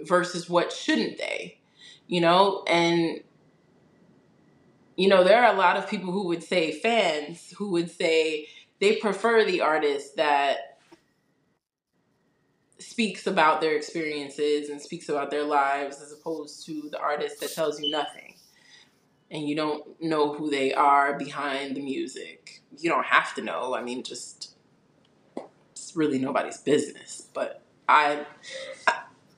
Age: 20-39